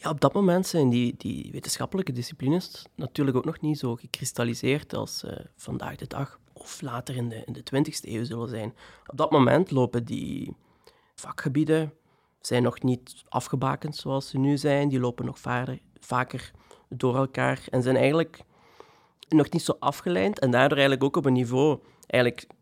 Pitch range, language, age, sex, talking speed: 130-150 Hz, Dutch, 30-49, male, 175 wpm